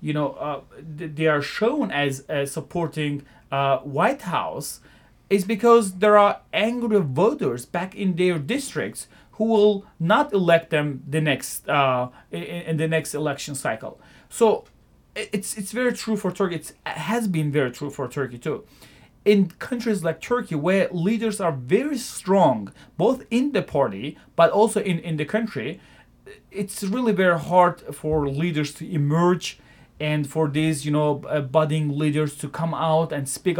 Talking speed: 165 wpm